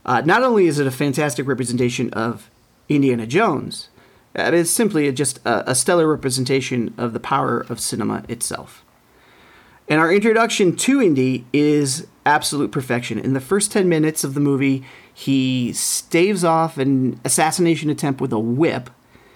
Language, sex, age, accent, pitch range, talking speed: English, male, 40-59, American, 130-180 Hz, 150 wpm